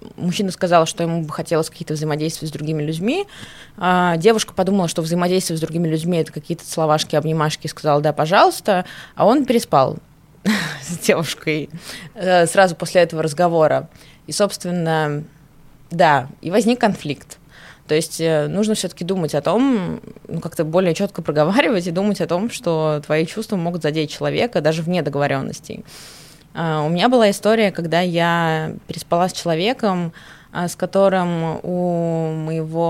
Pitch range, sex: 155-185 Hz, female